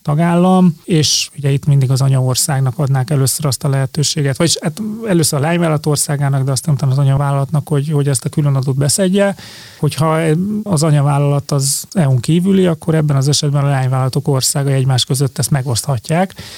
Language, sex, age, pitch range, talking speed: Hungarian, male, 30-49, 135-155 Hz, 170 wpm